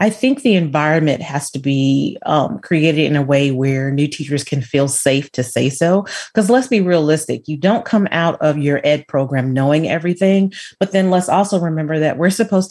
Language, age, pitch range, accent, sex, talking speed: English, 30-49, 145-190 Hz, American, female, 205 wpm